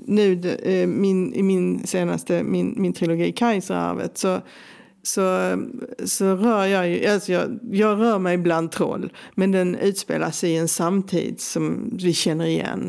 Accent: native